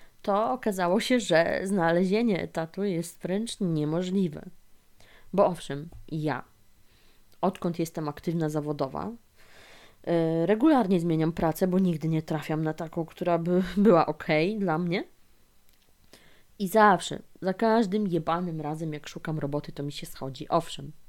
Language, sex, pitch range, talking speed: Polish, female, 155-200 Hz, 130 wpm